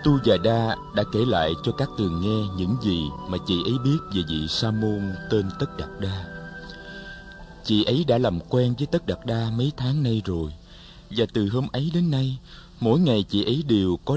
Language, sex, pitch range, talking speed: Vietnamese, male, 90-130 Hz, 205 wpm